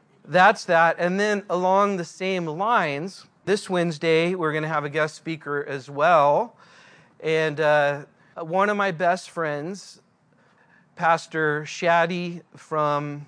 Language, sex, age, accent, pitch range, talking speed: English, male, 40-59, American, 145-180 Hz, 130 wpm